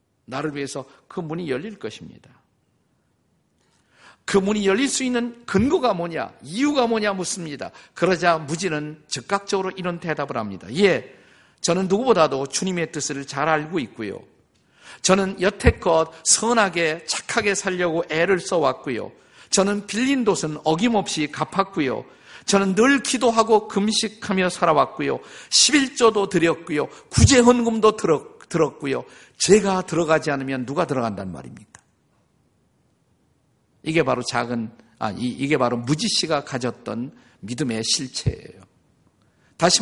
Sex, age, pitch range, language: male, 50-69, 155-215 Hz, Korean